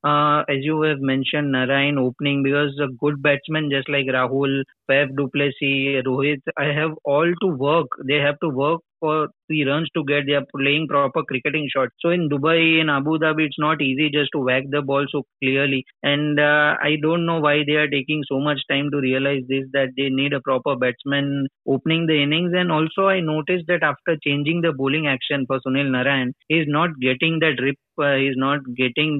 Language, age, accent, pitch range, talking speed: English, 20-39, Indian, 135-155 Hz, 210 wpm